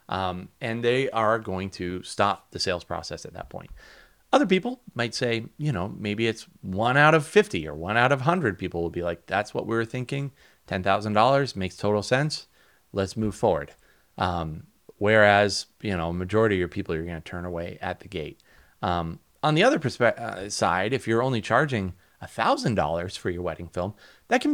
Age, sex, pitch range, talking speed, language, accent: 30-49, male, 90-120 Hz, 200 wpm, English, American